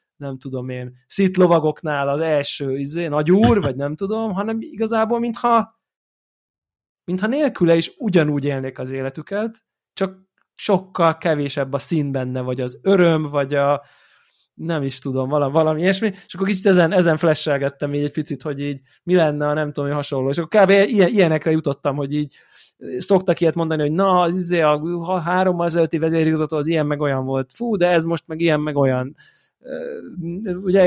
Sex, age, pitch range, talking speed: male, 20-39, 145-190 Hz, 170 wpm